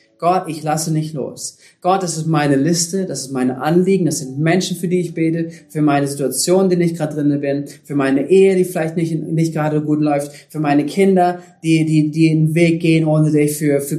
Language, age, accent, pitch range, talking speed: German, 30-49, German, 145-180 Hz, 225 wpm